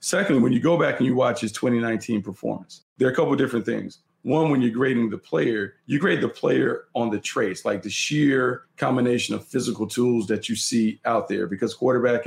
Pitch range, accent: 110-130 Hz, American